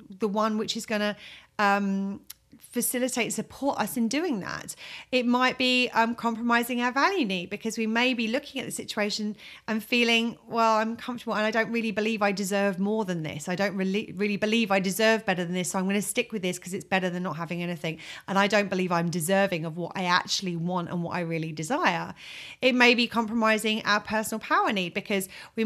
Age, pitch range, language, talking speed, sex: 30-49, 195-235 Hz, English, 215 wpm, female